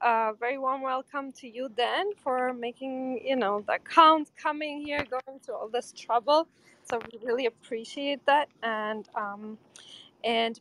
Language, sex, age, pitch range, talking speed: English, female, 20-39, 230-280 Hz, 165 wpm